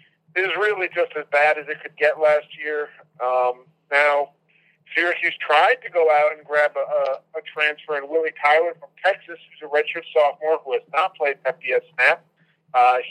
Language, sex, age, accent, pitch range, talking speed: English, male, 40-59, American, 155-180 Hz, 185 wpm